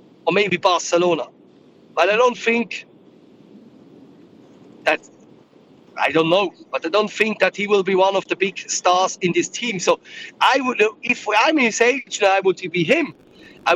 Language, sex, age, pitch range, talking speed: English, male, 30-49, 170-220 Hz, 170 wpm